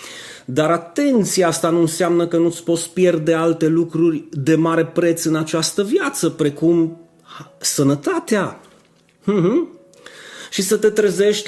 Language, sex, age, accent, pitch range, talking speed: Romanian, male, 30-49, native, 130-175 Hz, 130 wpm